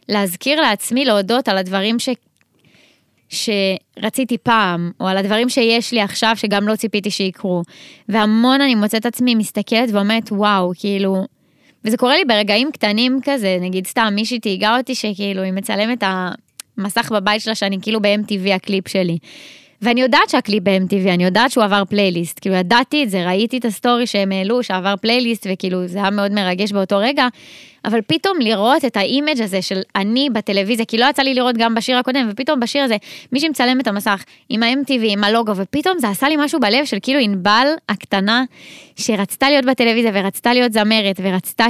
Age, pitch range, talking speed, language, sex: 20-39, 200-250 Hz, 175 wpm, Hebrew, female